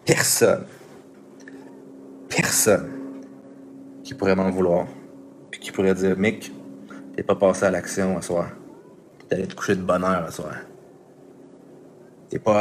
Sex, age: male, 30-49